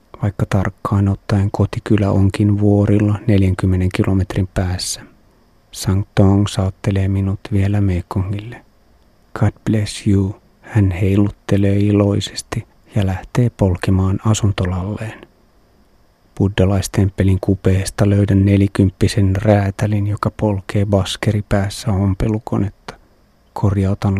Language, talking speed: Finnish, 90 wpm